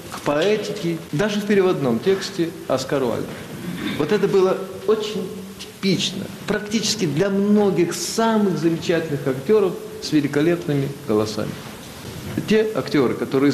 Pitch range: 130-205 Hz